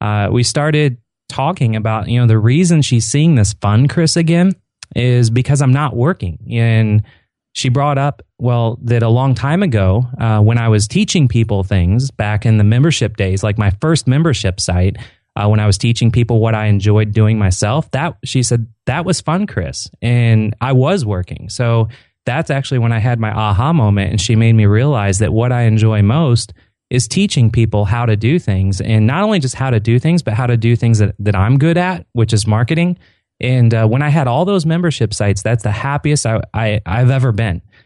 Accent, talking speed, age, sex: American, 210 wpm, 30-49, male